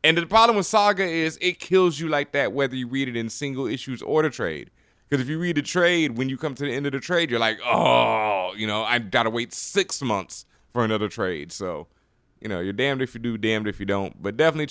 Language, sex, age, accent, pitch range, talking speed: English, male, 20-39, American, 110-135 Hz, 255 wpm